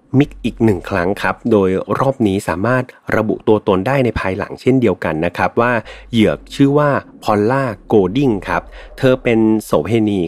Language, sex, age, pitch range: Thai, male, 30-49, 95-130 Hz